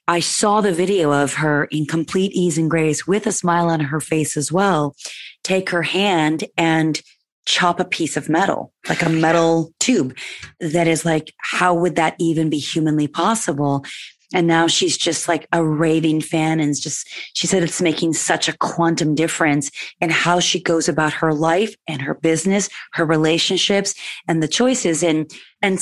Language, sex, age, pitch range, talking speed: English, female, 30-49, 160-195 Hz, 180 wpm